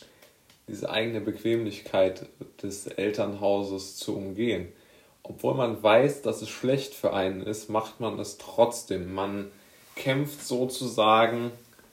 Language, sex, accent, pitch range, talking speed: German, male, German, 100-120 Hz, 115 wpm